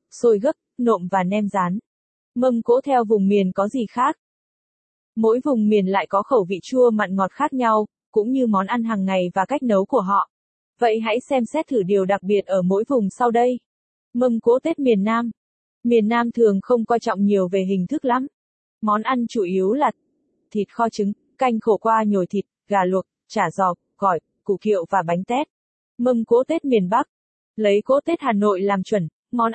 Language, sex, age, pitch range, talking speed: Vietnamese, female, 20-39, 200-245 Hz, 205 wpm